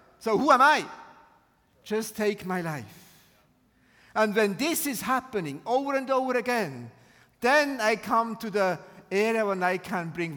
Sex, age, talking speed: male, 50-69, 155 wpm